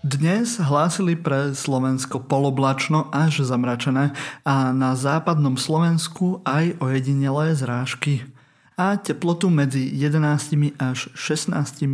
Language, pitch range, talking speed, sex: Slovak, 135-155 Hz, 100 wpm, male